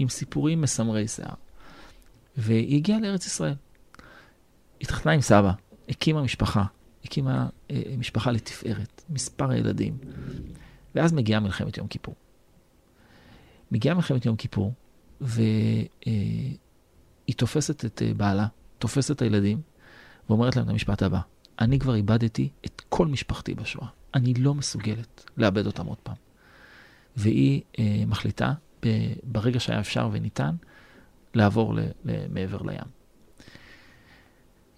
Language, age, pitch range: Hebrew, 40-59, 110-135 Hz